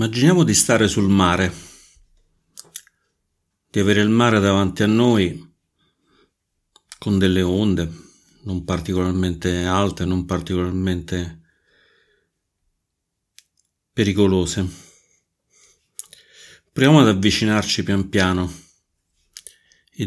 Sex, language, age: male, Italian, 50-69